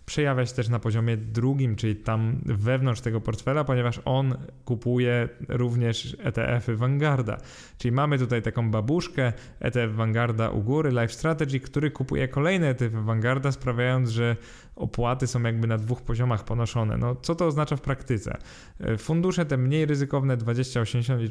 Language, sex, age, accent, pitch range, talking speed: Polish, male, 20-39, native, 115-130 Hz, 150 wpm